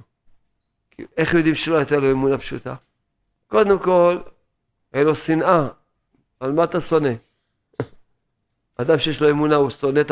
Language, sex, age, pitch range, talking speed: Hebrew, male, 50-69, 115-170 Hz, 135 wpm